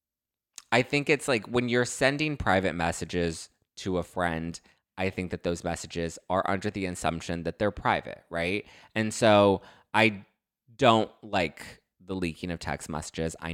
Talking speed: 160 wpm